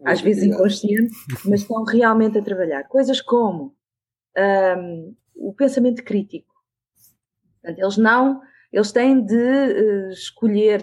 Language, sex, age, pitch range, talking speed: Portuguese, female, 20-39, 190-235 Hz, 115 wpm